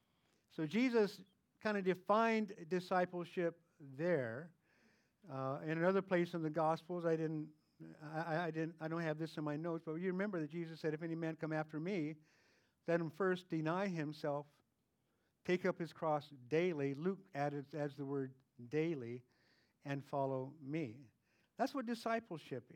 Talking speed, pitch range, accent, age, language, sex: 160 wpm, 140-175 Hz, American, 50-69, English, male